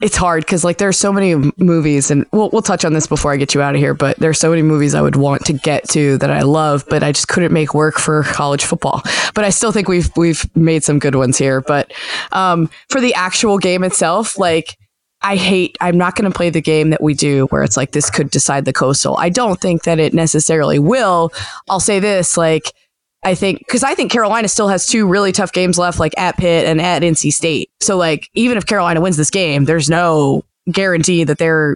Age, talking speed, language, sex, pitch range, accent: 20-39, 245 wpm, English, female, 150-190 Hz, American